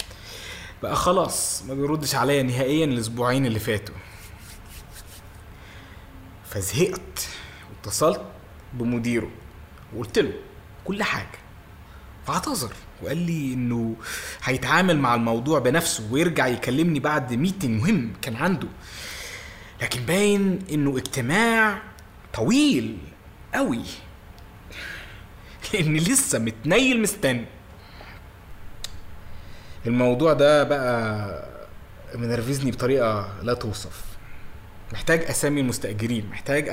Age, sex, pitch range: 20-39, male, 95-140 Hz